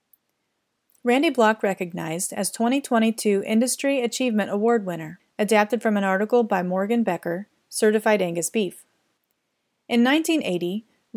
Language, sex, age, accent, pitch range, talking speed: English, female, 30-49, American, 190-235 Hz, 115 wpm